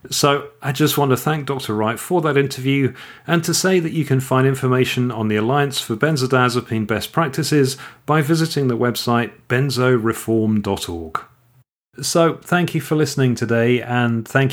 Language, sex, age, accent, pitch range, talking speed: English, male, 40-59, British, 110-145 Hz, 160 wpm